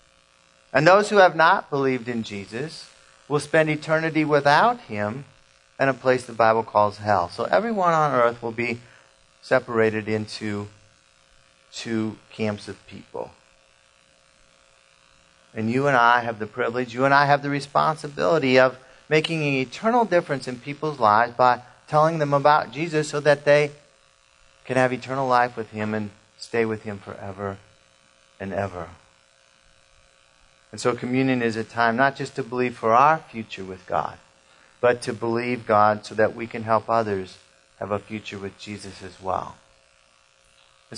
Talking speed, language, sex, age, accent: 155 wpm, English, male, 40-59, American